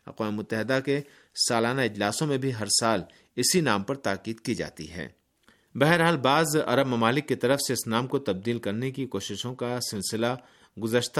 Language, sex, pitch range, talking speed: Urdu, male, 105-140 Hz, 175 wpm